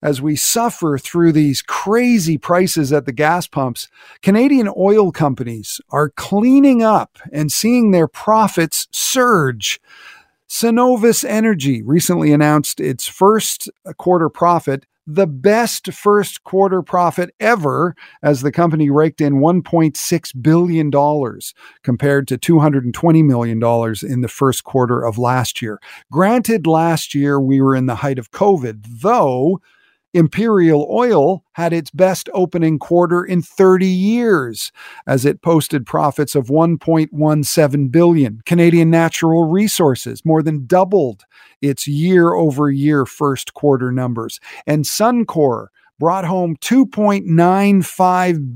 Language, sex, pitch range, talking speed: English, male, 140-185 Hz, 120 wpm